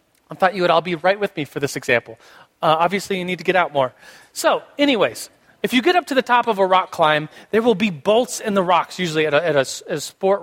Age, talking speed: 30-49, 260 wpm